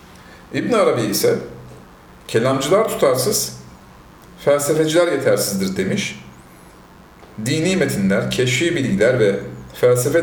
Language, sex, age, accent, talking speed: Turkish, male, 40-59, native, 80 wpm